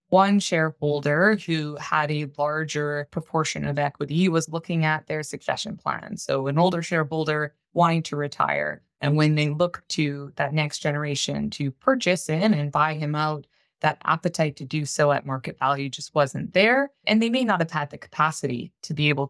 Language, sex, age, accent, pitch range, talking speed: English, female, 20-39, American, 145-165 Hz, 185 wpm